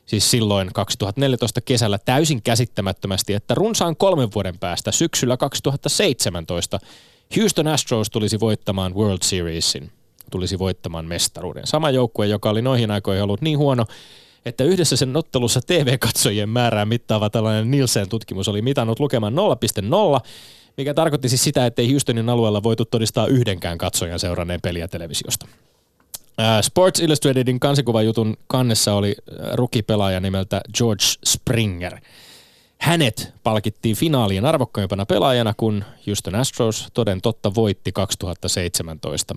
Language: Finnish